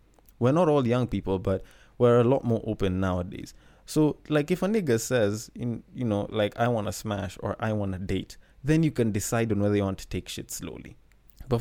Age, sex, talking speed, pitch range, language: 20-39, male, 225 wpm, 95-125 Hz, English